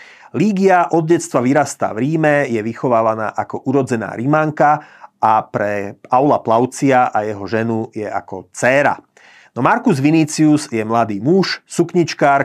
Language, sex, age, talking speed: Slovak, male, 30-49, 130 wpm